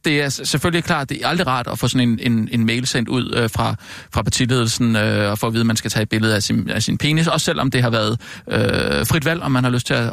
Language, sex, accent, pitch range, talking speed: Danish, male, native, 115-150 Hz, 300 wpm